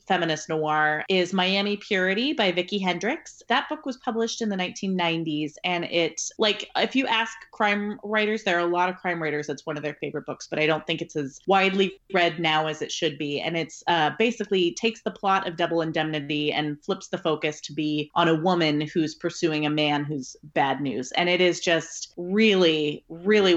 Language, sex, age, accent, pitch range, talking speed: English, female, 30-49, American, 160-210 Hz, 205 wpm